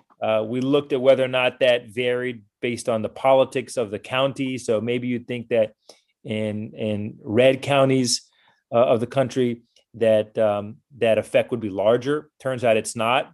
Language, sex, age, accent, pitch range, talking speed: English, male, 30-49, American, 110-130 Hz, 180 wpm